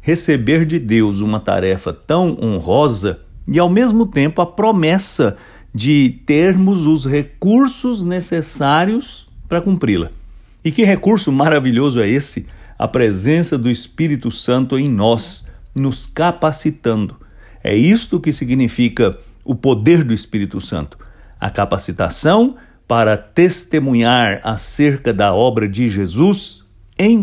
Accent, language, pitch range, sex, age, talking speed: Brazilian, English, 105-155 Hz, male, 60-79, 120 wpm